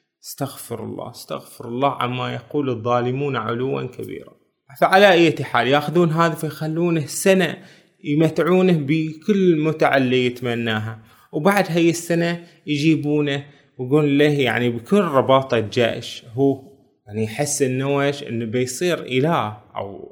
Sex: male